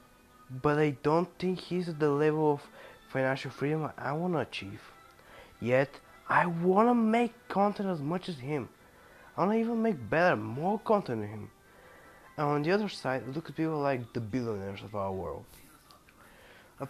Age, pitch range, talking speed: 20-39, 125-185 Hz, 165 wpm